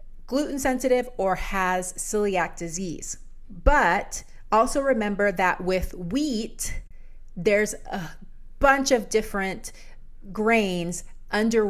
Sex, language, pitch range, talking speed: female, English, 175-220 Hz, 95 wpm